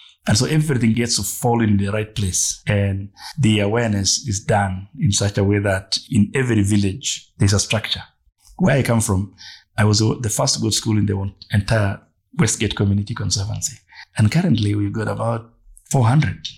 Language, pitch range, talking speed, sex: English, 100-120 Hz, 180 wpm, male